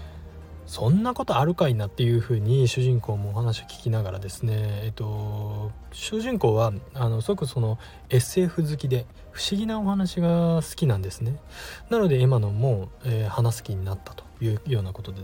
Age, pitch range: 20-39, 100-135 Hz